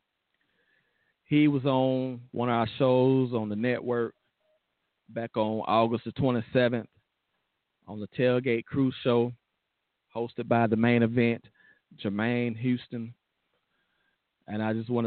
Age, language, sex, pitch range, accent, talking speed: 40-59, English, male, 110-125 Hz, American, 125 wpm